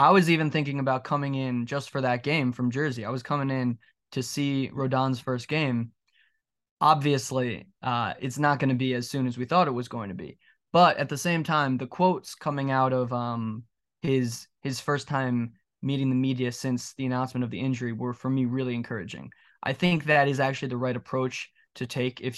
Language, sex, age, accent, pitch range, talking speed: English, male, 20-39, American, 125-145 Hz, 210 wpm